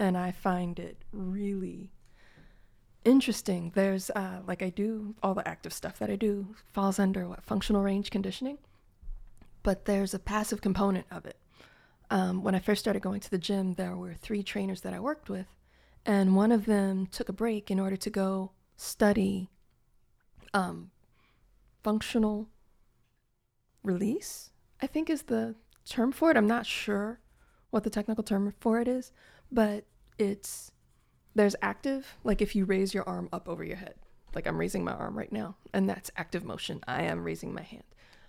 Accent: American